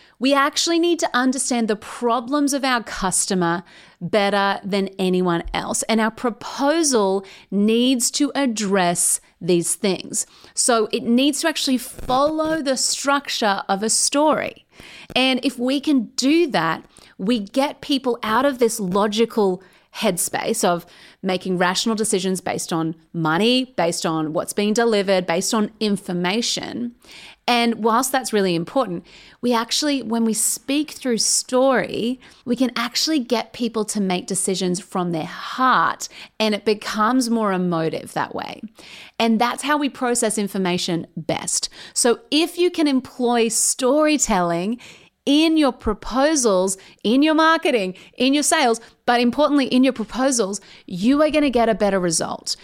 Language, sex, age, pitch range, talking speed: English, female, 30-49, 195-260 Hz, 145 wpm